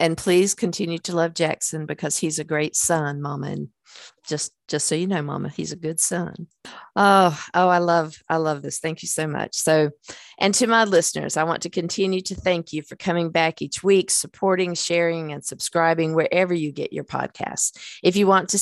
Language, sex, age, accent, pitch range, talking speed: English, female, 50-69, American, 155-185 Hz, 205 wpm